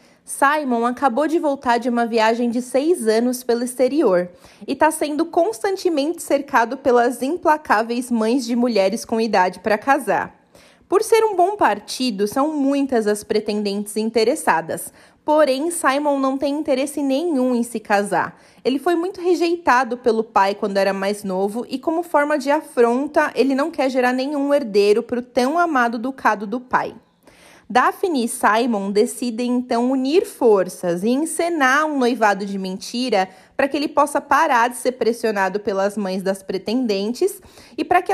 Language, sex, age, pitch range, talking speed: Portuguese, female, 20-39, 225-295 Hz, 160 wpm